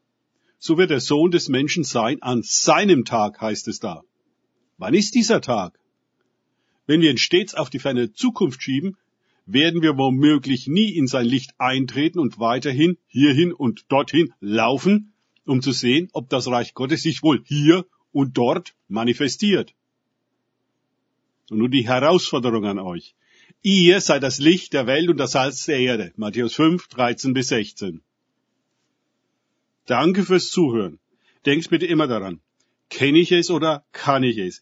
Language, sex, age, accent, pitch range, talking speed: German, male, 50-69, German, 125-165 Hz, 155 wpm